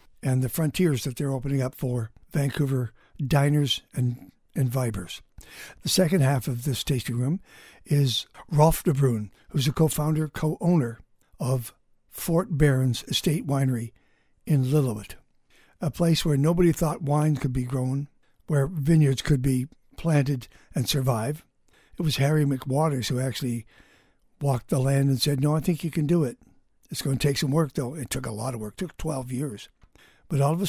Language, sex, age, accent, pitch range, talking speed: English, male, 60-79, American, 130-155 Hz, 175 wpm